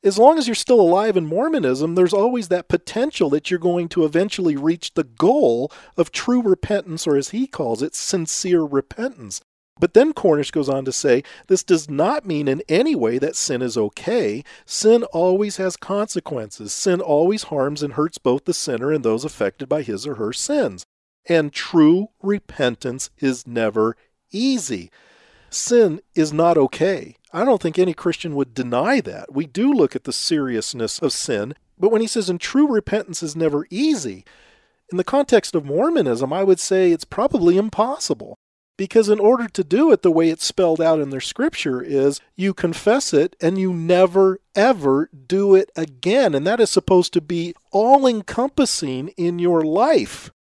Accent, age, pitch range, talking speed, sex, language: American, 40-59, 155-210 Hz, 180 wpm, male, English